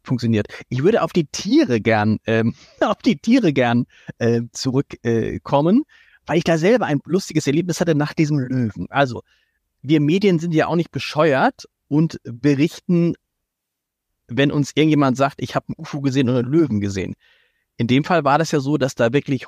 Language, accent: German, German